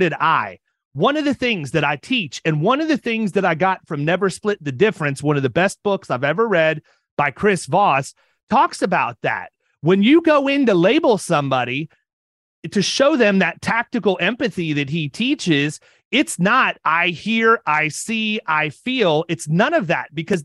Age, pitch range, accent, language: 30-49, 160-235 Hz, American, English